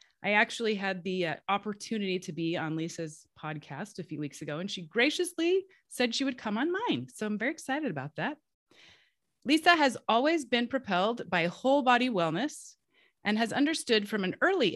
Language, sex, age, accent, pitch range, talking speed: English, female, 30-49, American, 175-275 Hz, 185 wpm